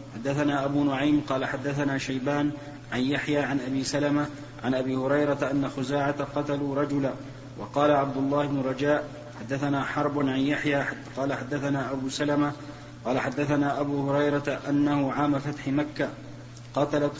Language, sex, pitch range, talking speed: Arabic, male, 140-150 Hz, 140 wpm